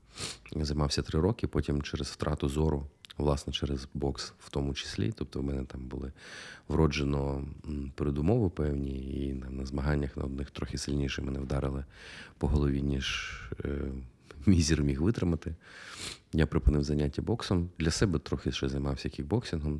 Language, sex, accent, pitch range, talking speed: Ukrainian, male, native, 70-80 Hz, 140 wpm